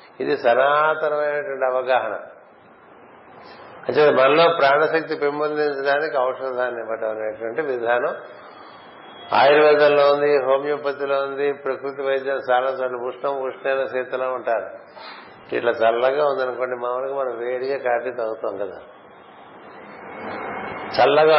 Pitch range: 130-155 Hz